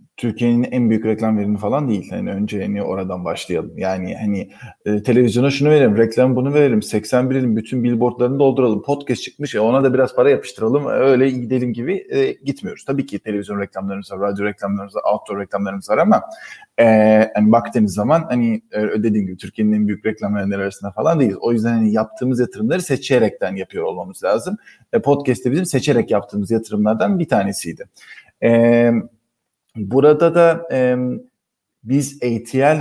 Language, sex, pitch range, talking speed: Turkish, male, 105-135 Hz, 165 wpm